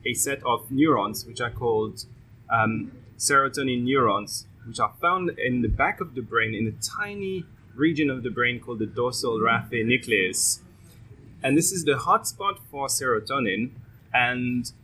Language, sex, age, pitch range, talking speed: English, male, 20-39, 115-135 Hz, 160 wpm